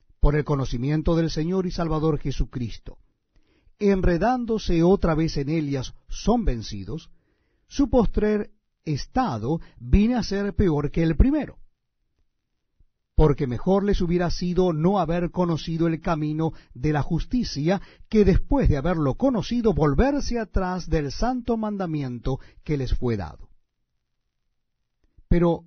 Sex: male